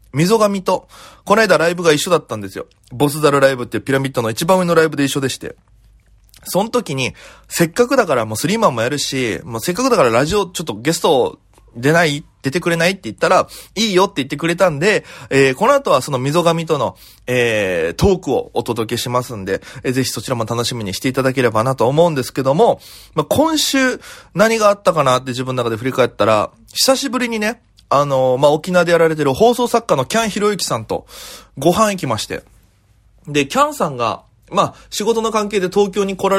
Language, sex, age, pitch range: Japanese, male, 20-39, 130-195 Hz